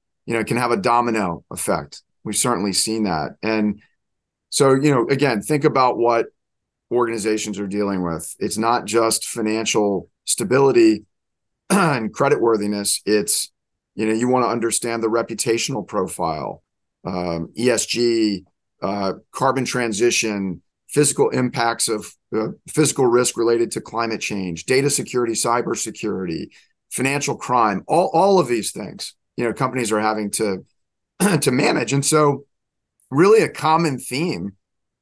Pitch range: 105-130 Hz